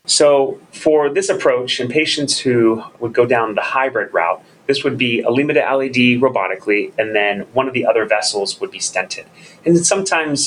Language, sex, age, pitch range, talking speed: English, male, 30-49, 110-150 Hz, 185 wpm